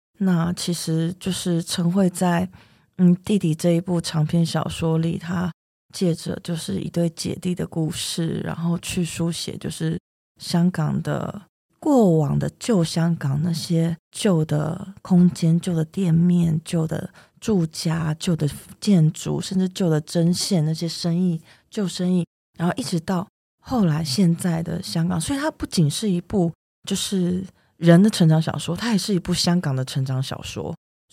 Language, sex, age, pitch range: Chinese, female, 20-39, 160-185 Hz